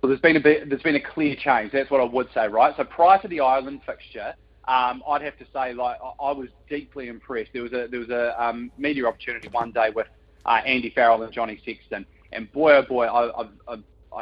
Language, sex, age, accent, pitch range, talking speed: English, male, 30-49, Australian, 120-145 Hz, 240 wpm